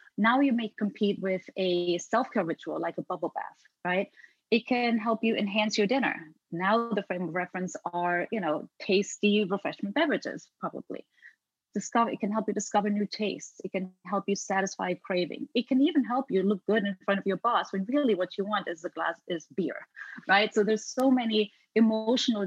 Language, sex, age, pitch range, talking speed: English, female, 30-49, 185-230 Hz, 195 wpm